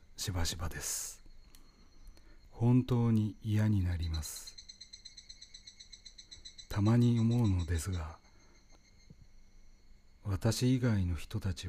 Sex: male